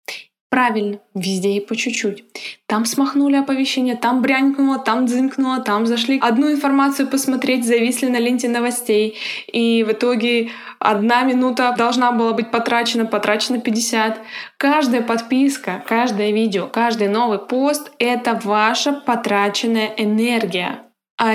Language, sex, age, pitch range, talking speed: Russian, female, 20-39, 210-260 Hz, 125 wpm